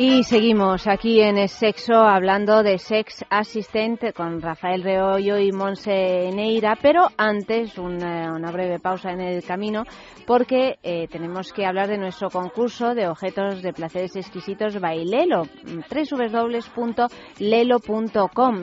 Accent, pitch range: Spanish, 185-225 Hz